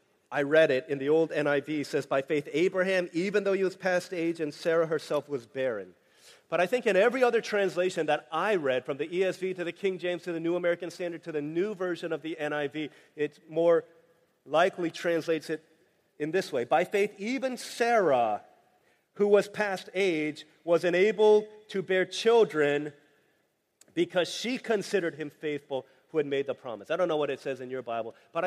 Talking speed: 195 wpm